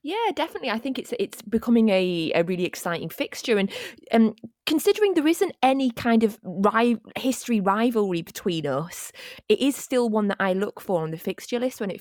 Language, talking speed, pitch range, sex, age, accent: English, 195 wpm, 175-270 Hz, female, 20-39, British